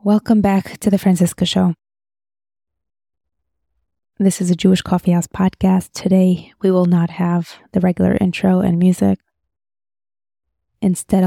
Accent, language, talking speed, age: American, English, 120 wpm, 20-39